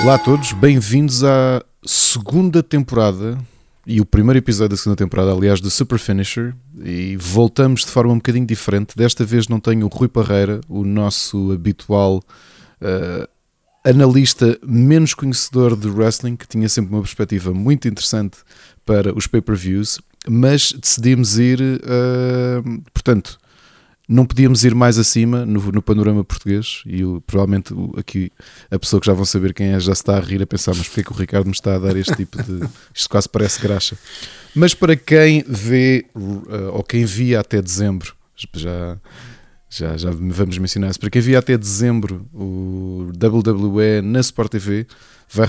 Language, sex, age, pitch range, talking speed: Portuguese, male, 20-39, 100-120 Hz, 165 wpm